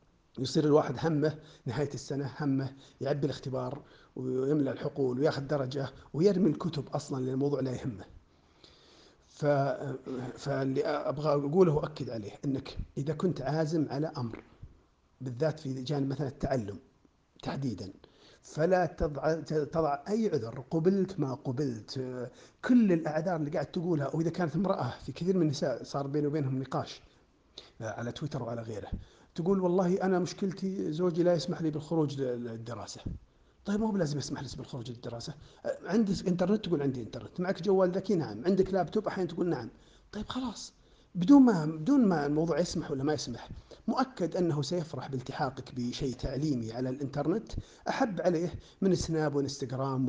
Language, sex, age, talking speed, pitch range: Arabic, male, 50-69, 145 wpm, 130-175 Hz